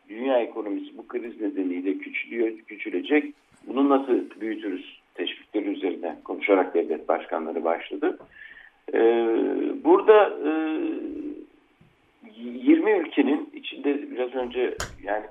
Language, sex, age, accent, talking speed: Turkish, male, 60-79, native, 90 wpm